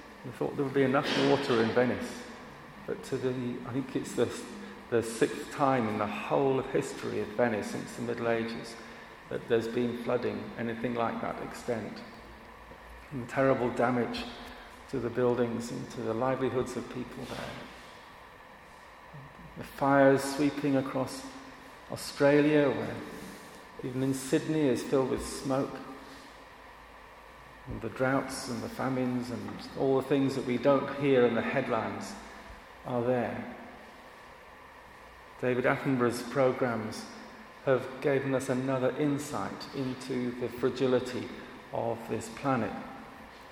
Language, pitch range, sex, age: English, 120-140 Hz, male, 40-59